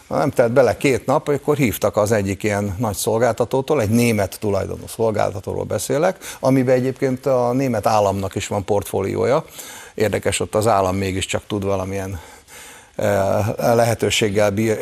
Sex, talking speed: male, 140 wpm